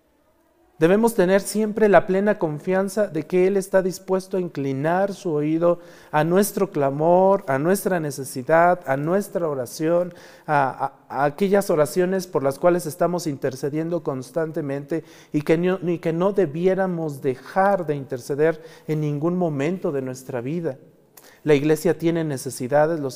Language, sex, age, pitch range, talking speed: Spanish, male, 40-59, 150-185 Hz, 135 wpm